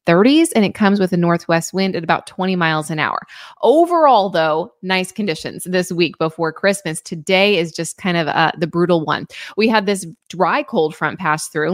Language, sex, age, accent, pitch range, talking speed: English, female, 20-39, American, 170-215 Hz, 200 wpm